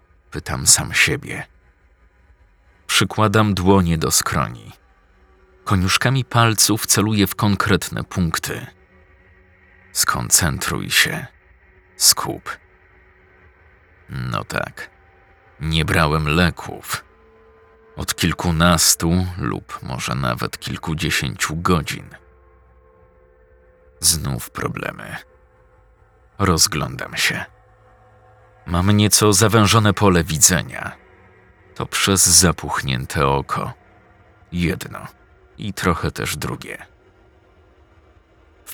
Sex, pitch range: male, 75-95 Hz